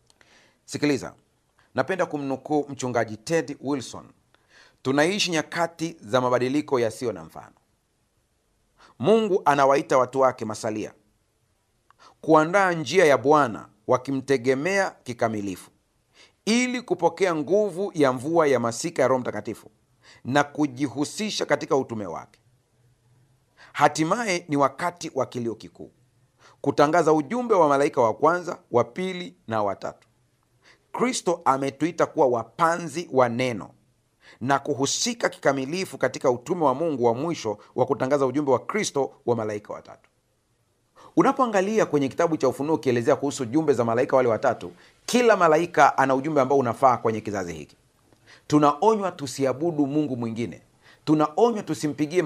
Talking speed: 120 wpm